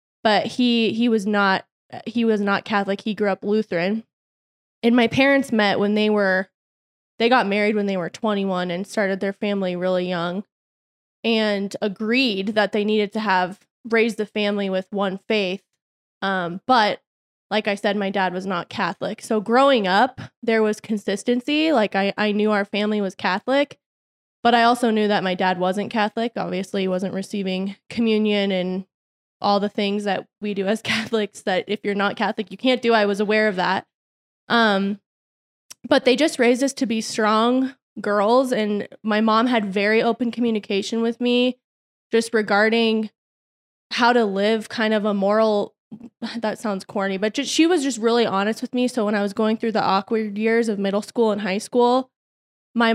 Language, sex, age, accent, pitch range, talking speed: English, female, 20-39, American, 200-230 Hz, 185 wpm